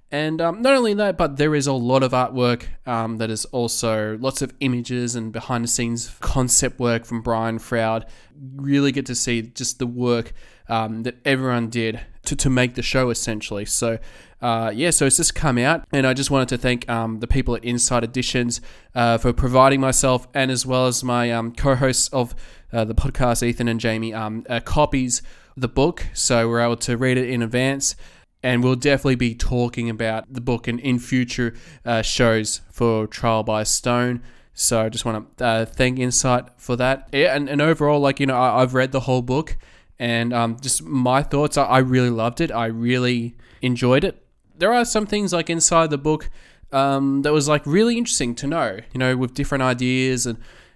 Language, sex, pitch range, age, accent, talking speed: English, male, 115-135 Hz, 20-39, Australian, 205 wpm